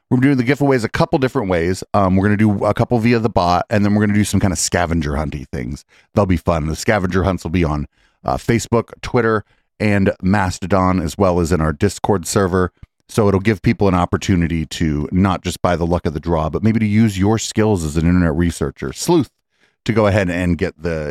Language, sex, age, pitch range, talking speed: English, male, 30-49, 85-115 Hz, 235 wpm